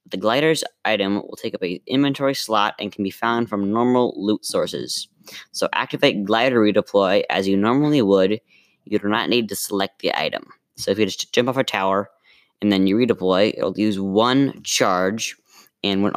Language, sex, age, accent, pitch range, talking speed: English, female, 10-29, American, 95-115 Hz, 195 wpm